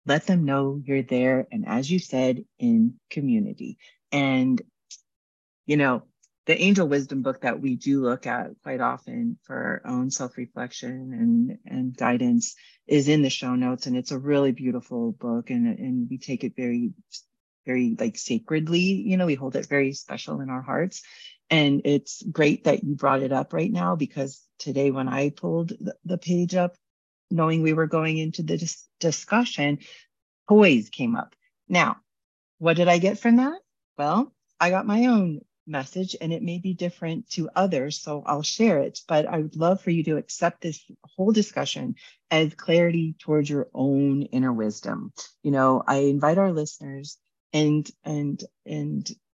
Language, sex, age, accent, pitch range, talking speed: English, female, 40-59, American, 135-195 Hz, 175 wpm